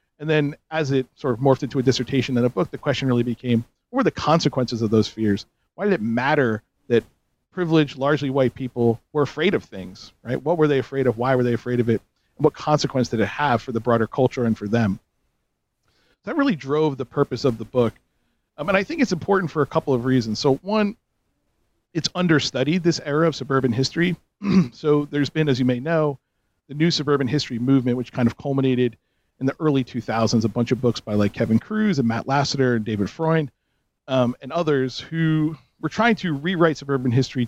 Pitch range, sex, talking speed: 120-155 Hz, male, 215 wpm